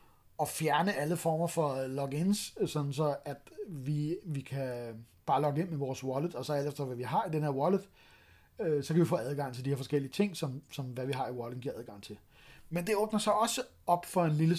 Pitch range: 140-185 Hz